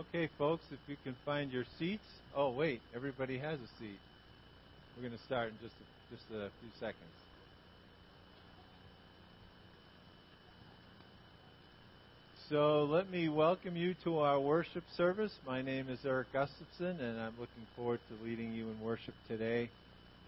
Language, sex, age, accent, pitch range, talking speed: English, male, 50-69, American, 115-155 Hz, 145 wpm